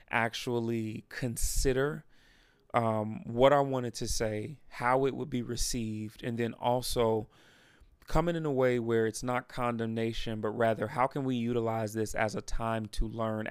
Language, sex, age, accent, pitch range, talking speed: English, male, 30-49, American, 110-125 Hz, 160 wpm